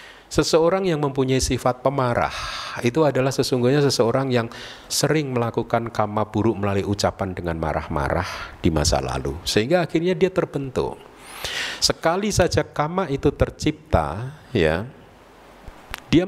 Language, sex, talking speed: Indonesian, male, 120 wpm